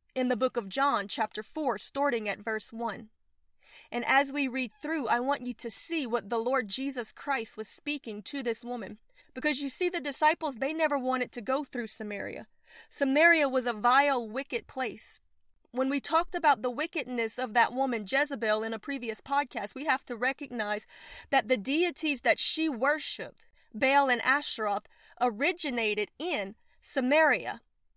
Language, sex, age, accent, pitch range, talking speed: English, female, 30-49, American, 230-285 Hz, 170 wpm